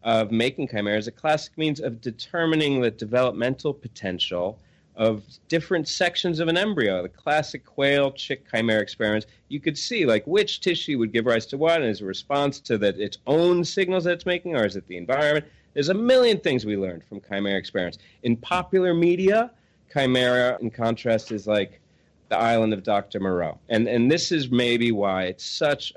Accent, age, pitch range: American, 30-49, 105-155 Hz